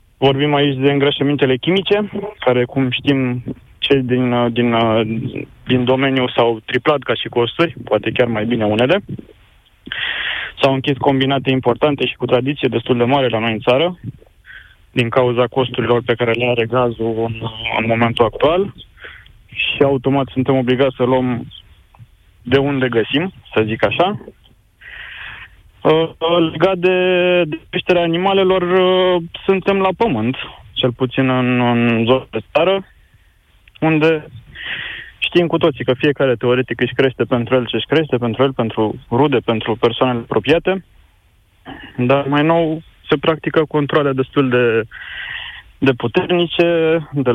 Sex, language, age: male, Romanian, 20-39